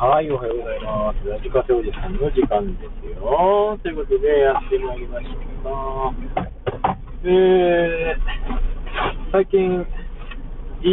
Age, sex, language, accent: 20-39, male, Japanese, native